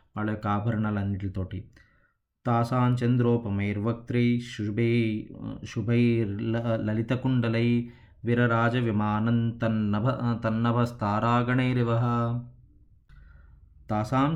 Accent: native